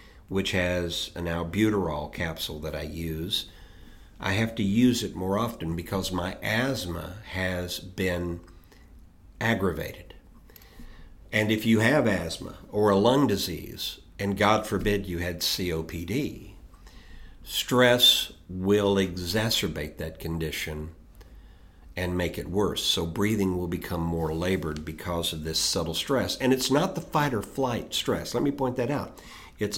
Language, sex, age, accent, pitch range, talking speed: English, male, 50-69, American, 85-105 Hz, 140 wpm